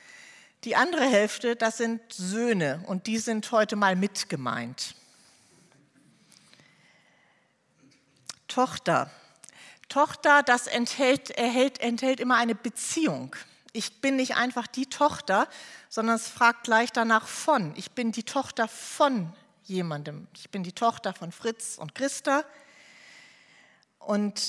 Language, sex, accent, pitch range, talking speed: German, female, German, 210-260 Hz, 120 wpm